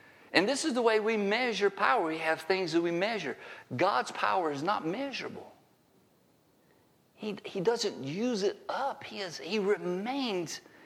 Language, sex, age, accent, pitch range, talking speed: English, male, 50-69, American, 175-265 Hz, 155 wpm